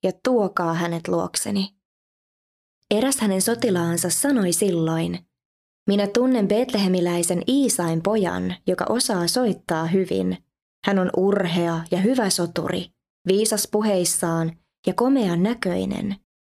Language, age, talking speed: Finnish, 20-39, 105 wpm